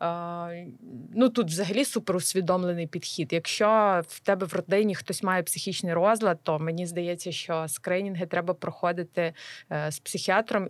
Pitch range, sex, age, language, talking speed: 170-200 Hz, female, 20-39, Ukrainian, 135 wpm